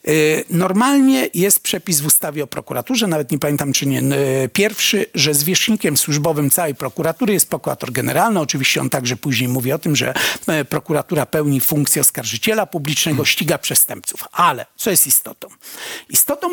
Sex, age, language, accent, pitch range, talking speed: male, 50-69, Polish, native, 145-195 Hz, 150 wpm